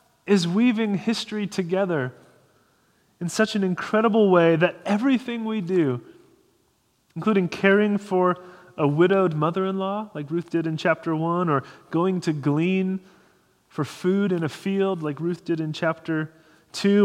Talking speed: 140 wpm